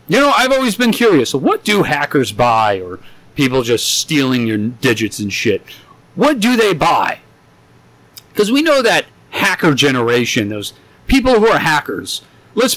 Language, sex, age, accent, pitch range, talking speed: English, male, 40-59, American, 125-165 Hz, 160 wpm